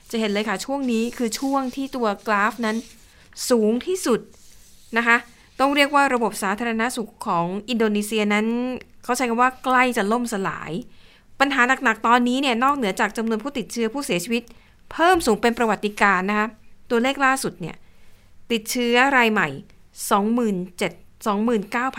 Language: Thai